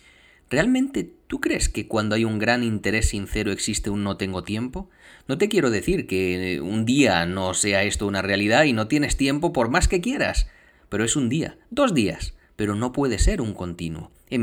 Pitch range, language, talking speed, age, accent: 105-150 Hz, Spanish, 200 wpm, 30-49, Spanish